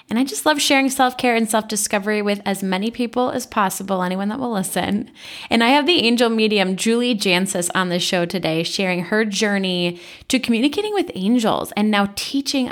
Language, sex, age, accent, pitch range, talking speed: English, female, 10-29, American, 190-250 Hz, 190 wpm